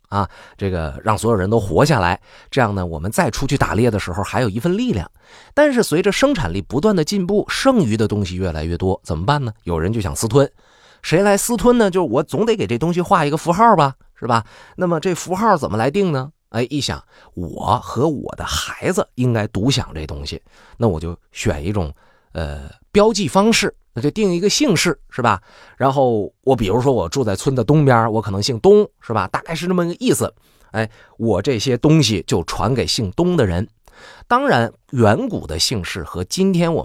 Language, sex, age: Chinese, male, 30-49